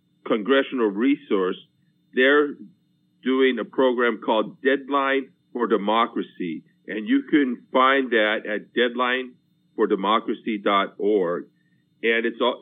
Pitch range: 115-140 Hz